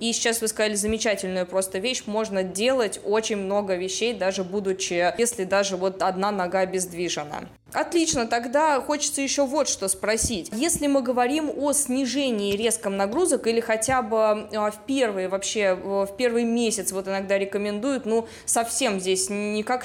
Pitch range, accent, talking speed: 195-240 Hz, native, 150 wpm